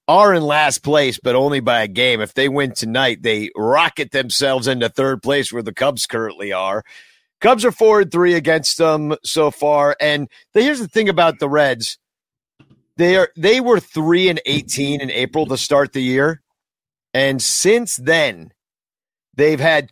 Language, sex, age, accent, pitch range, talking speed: English, male, 50-69, American, 130-170 Hz, 175 wpm